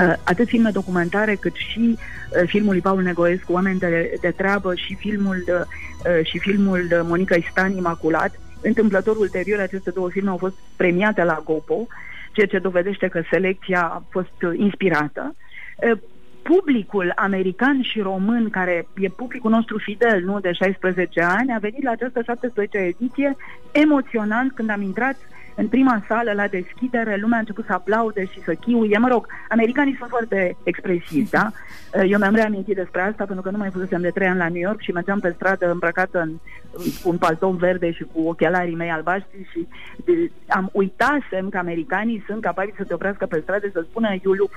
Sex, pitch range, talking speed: female, 180-230 Hz, 175 wpm